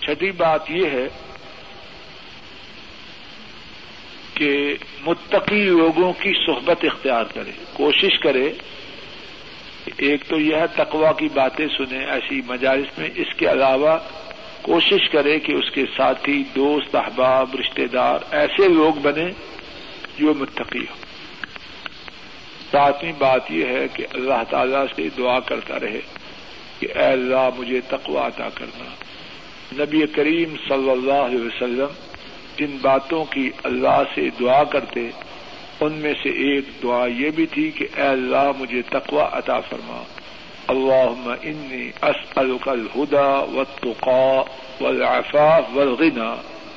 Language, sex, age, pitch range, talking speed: Urdu, male, 50-69, 130-155 Hz, 120 wpm